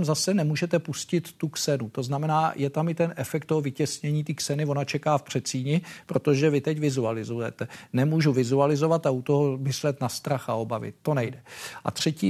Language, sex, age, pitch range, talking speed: Czech, male, 50-69, 125-145 Hz, 185 wpm